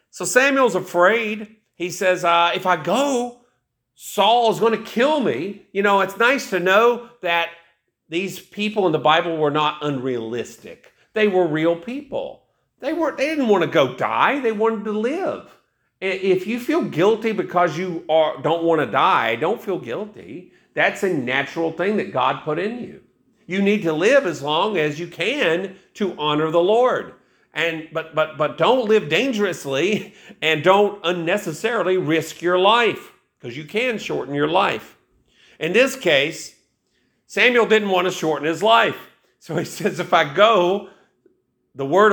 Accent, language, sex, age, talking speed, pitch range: American, English, male, 50-69, 170 wpm, 160-215 Hz